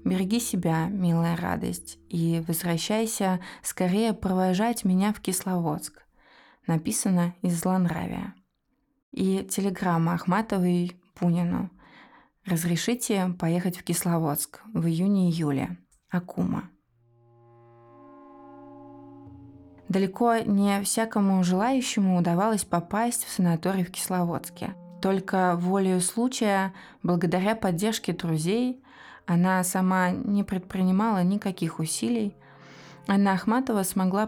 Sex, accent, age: female, native, 20-39